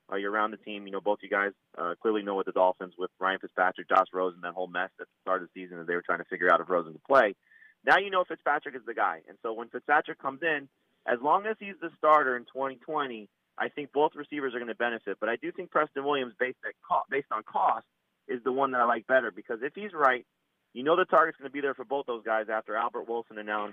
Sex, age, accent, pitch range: male, 30-49, American, 110-135 Hz